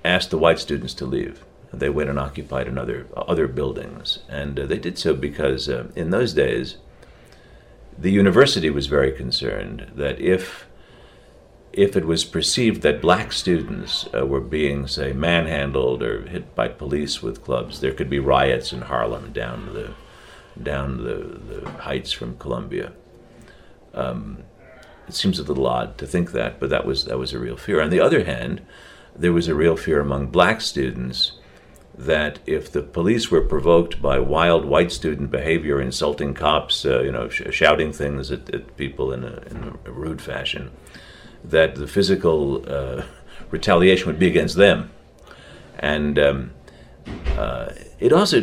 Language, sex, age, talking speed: English, male, 60-79, 165 wpm